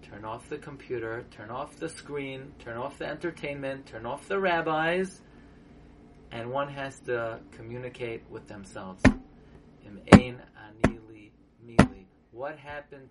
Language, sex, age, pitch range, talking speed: English, male, 30-49, 125-170 Hz, 130 wpm